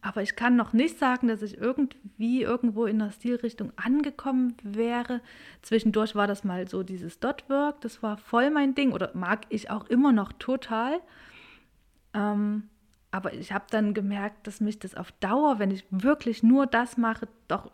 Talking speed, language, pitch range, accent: 175 wpm, English, 185-230 Hz, German